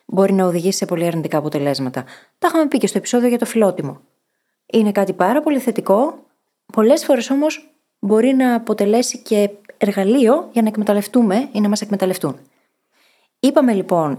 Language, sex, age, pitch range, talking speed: Greek, female, 20-39, 175-245 Hz, 160 wpm